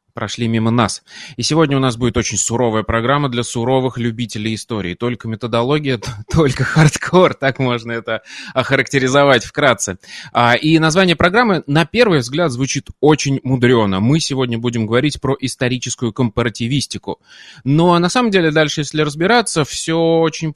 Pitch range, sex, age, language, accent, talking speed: 120-150 Hz, male, 20-39, Russian, native, 145 wpm